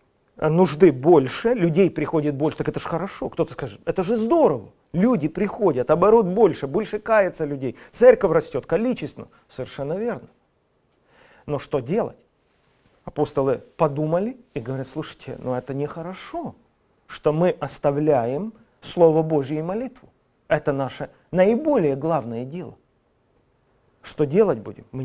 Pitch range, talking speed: 140-185 Hz, 125 wpm